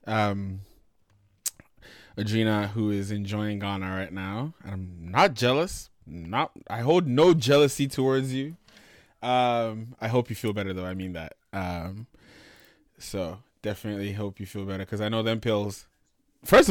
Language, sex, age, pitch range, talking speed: English, male, 20-39, 100-120 Hz, 150 wpm